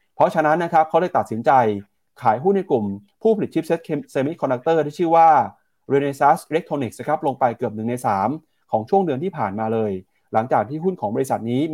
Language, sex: Thai, male